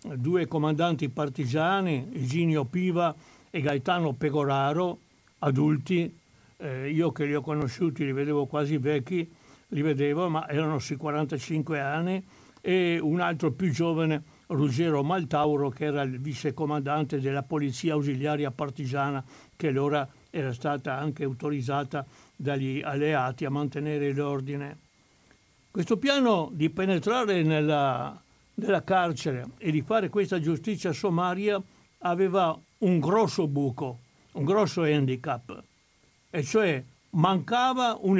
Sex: male